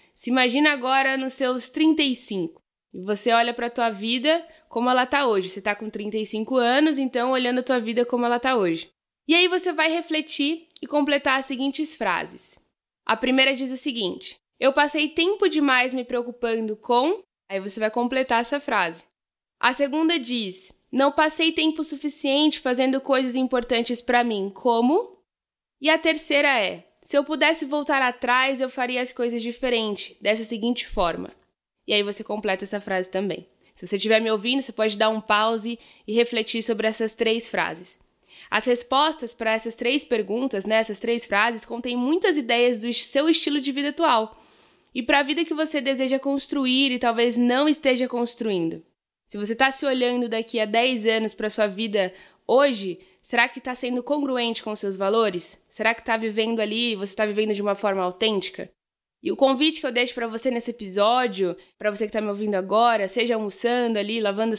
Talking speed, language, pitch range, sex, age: 185 wpm, Portuguese, 220-275 Hz, female, 10-29